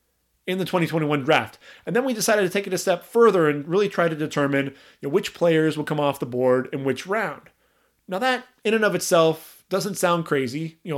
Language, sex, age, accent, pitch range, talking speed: English, male, 30-49, American, 145-185 Hz, 230 wpm